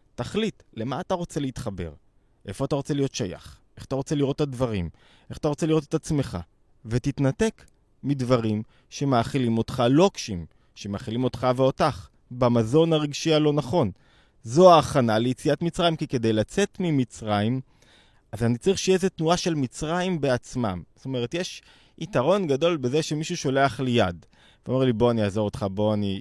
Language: Hebrew